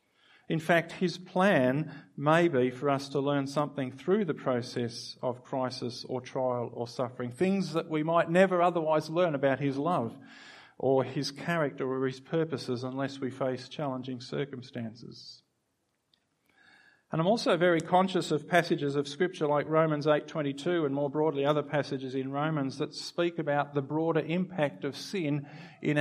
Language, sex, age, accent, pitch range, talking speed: English, male, 50-69, Australian, 140-170 Hz, 160 wpm